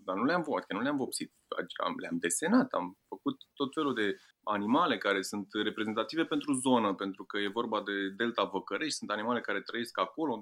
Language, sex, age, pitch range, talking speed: Romanian, male, 30-49, 100-140 Hz, 190 wpm